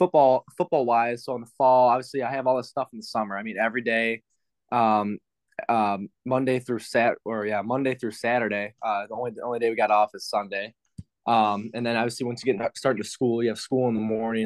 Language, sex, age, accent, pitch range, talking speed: English, male, 20-39, American, 110-125 Hz, 235 wpm